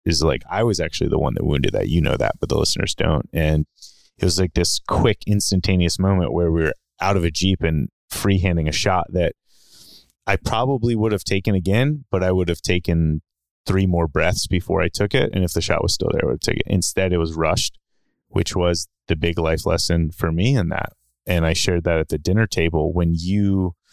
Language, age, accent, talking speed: English, 30-49, American, 230 wpm